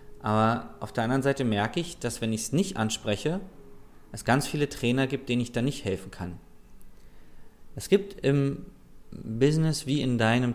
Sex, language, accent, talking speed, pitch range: male, German, German, 175 wpm, 110-140 Hz